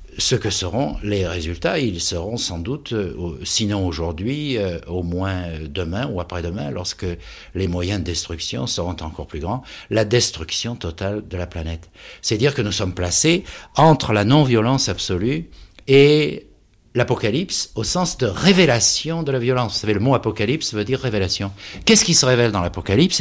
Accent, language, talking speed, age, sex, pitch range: French, French, 170 wpm, 60-79, male, 95-130 Hz